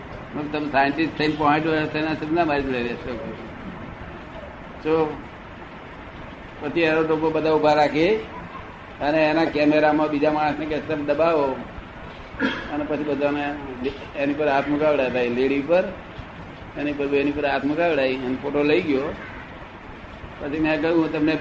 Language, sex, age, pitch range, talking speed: Gujarati, male, 60-79, 135-155 Hz, 90 wpm